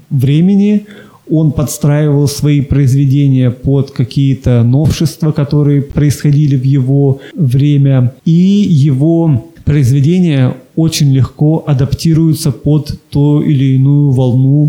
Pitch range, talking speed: 135-160 Hz, 100 wpm